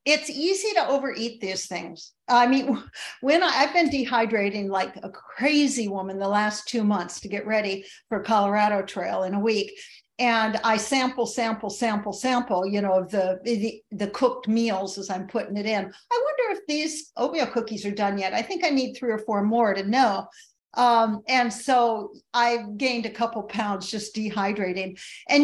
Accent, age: American, 50-69